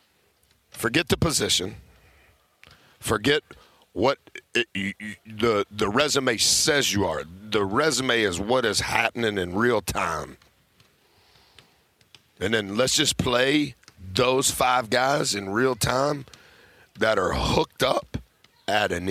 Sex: male